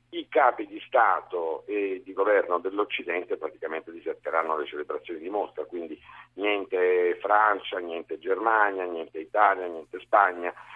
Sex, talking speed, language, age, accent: male, 130 wpm, Italian, 50-69, native